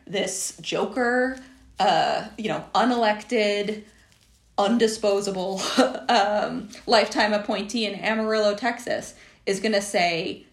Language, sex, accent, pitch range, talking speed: English, female, American, 175-245 Hz, 95 wpm